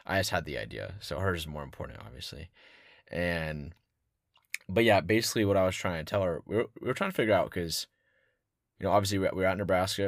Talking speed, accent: 225 wpm, American